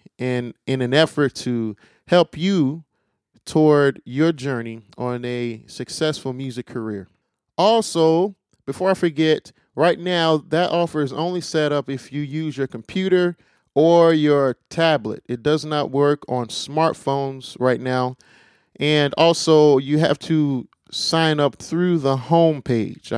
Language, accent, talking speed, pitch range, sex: English, American, 140 wpm, 125-165 Hz, male